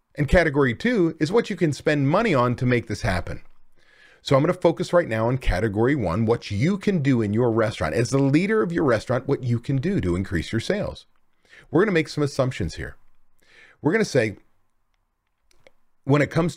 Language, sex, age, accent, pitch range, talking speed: English, male, 40-59, American, 110-155 Hz, 215 wpm